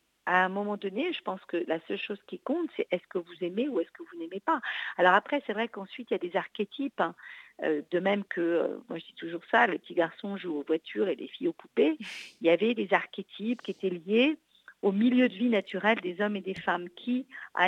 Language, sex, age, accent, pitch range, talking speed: French, female, 50-69, French, 185-235 Hz, 250 wpm